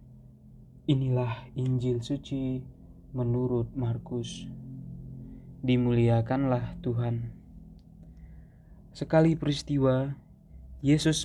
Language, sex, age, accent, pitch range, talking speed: Indonesian, male, 20-39, native, 115-135 Hz, 55 wpm